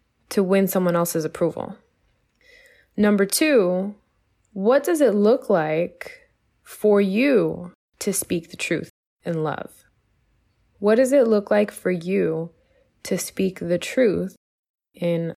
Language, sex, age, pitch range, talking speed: English, female, 20-39, 170-220 Hz, 125 wpm